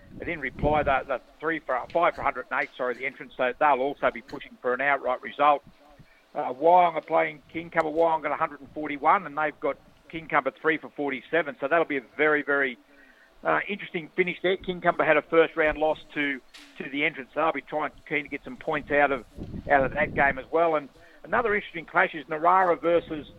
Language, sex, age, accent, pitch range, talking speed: English, male, 50-69, Australian, 145-165 Hz, 210 wpm